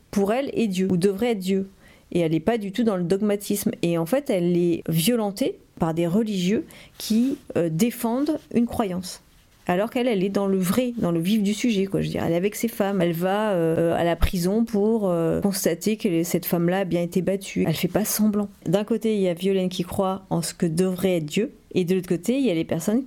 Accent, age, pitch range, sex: French, 40-59, 175-225 Hz, female